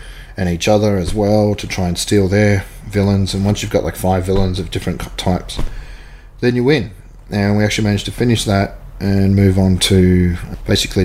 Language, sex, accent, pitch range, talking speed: English, male, Australian, 95-110 Hz, 195 wpm